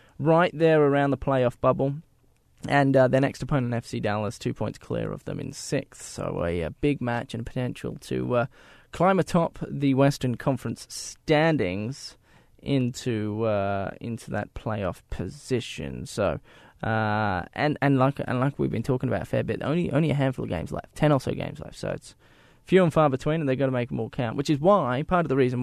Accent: Australian